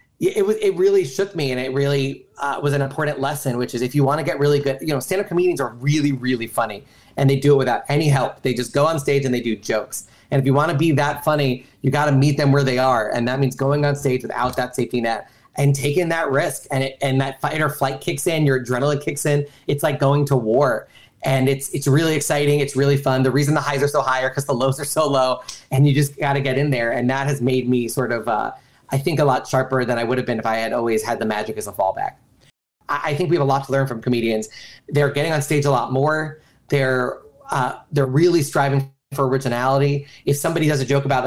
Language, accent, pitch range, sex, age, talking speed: Dutch, American, 130-145 Hz, male, 30-49, 270 wpm